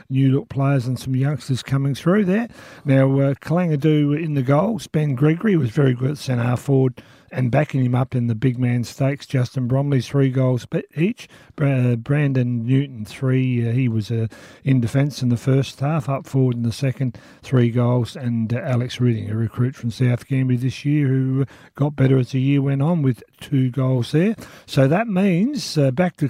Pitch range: 120-140 Hz